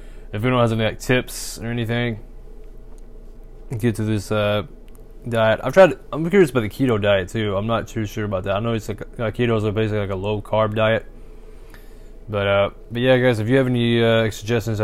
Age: 20-39